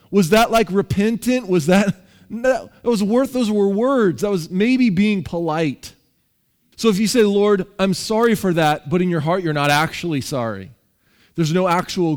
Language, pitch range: English, 140-190 Hz